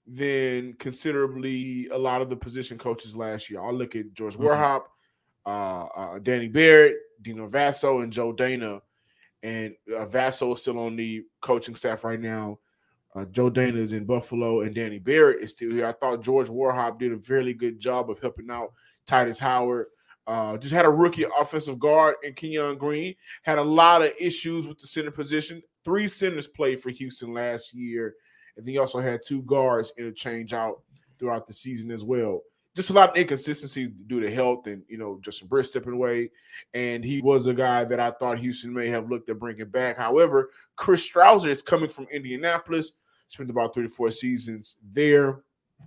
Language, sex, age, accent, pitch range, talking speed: English, male, 20-39, American, 115-150 Hz, 190 wpm